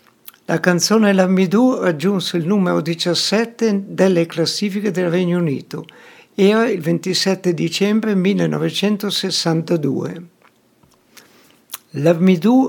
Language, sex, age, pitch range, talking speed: Italian, male, 60-79, 170-200 Hz, 85 wpm